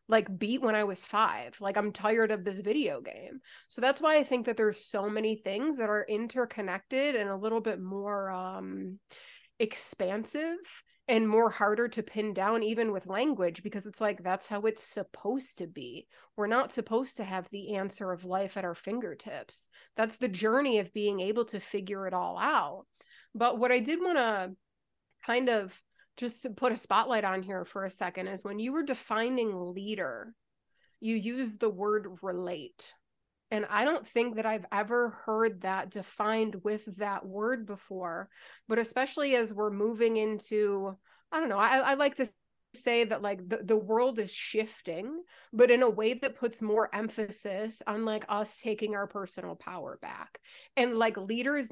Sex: female